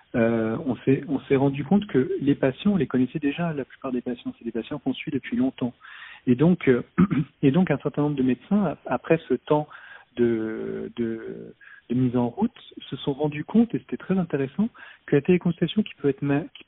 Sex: male